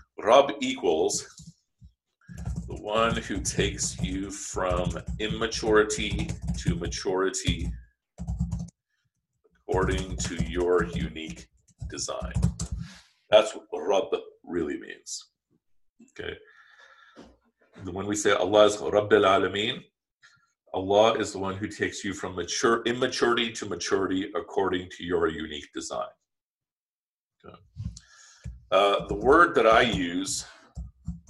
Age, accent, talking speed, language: 40-59, American, 100 wpm, English